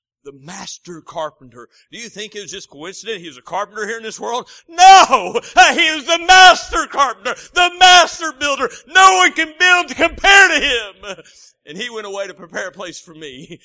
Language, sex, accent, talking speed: English, male, American, 200 wpm